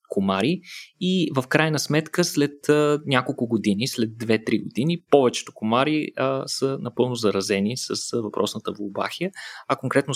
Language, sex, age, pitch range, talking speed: Bulgarian, male, 20-39, 105-140 Hz, 125 wpm